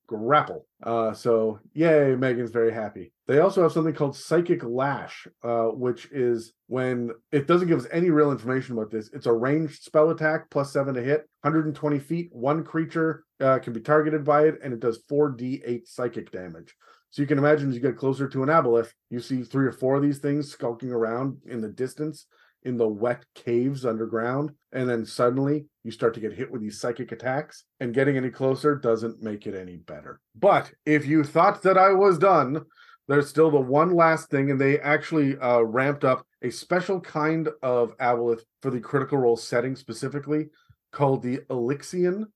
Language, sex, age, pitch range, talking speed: English, male, 30-49, 120-150 Hz, 195 wpm